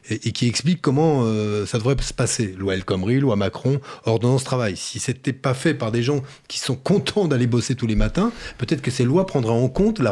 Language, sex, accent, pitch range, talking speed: French, male, French, 120-160 Hz, 235 wpm